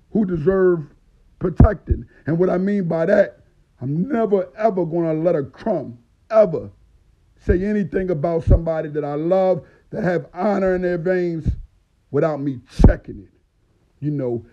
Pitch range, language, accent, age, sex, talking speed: 115-180 Hz, English, American, 50-69, male, 155 wpm